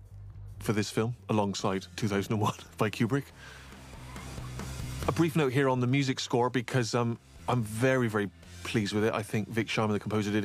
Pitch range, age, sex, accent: 105-125 Hz, 30-49, male, British